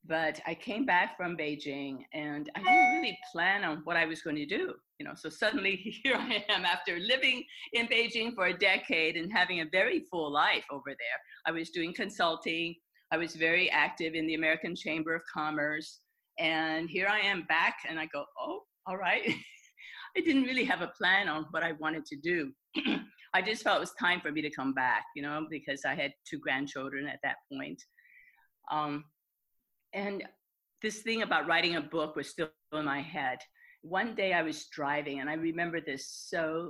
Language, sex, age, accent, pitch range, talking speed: English, female, 50-69, American, 155-235 Hz, 200 wpm